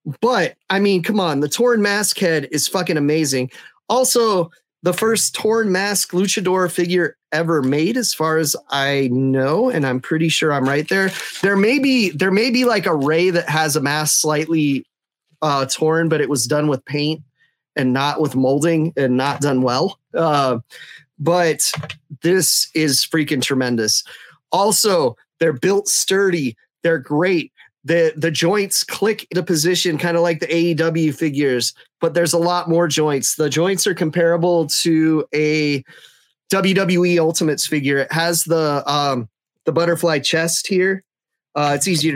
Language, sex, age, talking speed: English, male, 30-49, 160 wpm